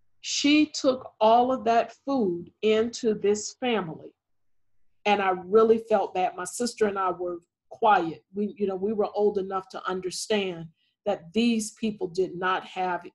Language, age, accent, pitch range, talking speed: English, 50-69, American, 185-225 Hz, 160 wpm